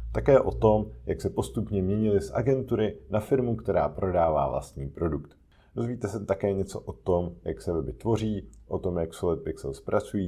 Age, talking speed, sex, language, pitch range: 50-69, 180 wpm, male, Czech, 80-105 Hz